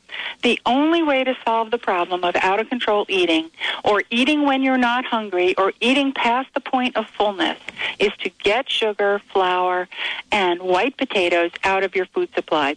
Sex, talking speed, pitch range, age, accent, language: female, 175 wpm, 195-270 Hz, 50-69, American, English